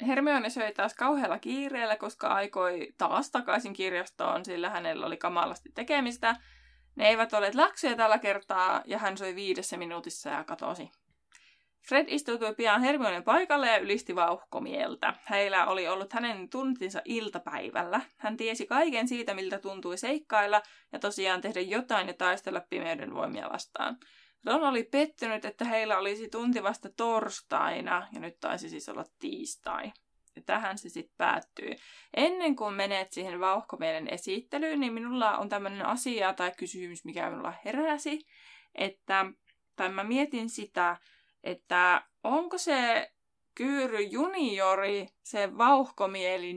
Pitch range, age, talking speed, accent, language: 195-275 Hz, 20-39, 135 wpm, native, Finnish